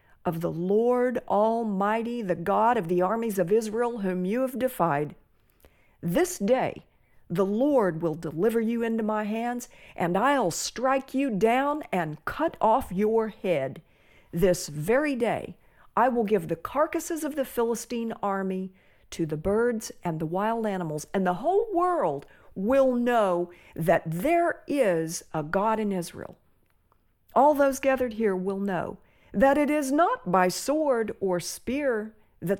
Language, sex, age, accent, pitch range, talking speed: English, female, 50-69, American, 180-245 Hz, 150 wpm